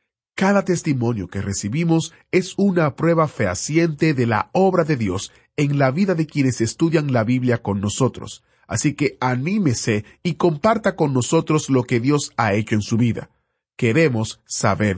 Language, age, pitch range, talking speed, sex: Spanish, 40-59, 115-160 Hz, 160 wpm, male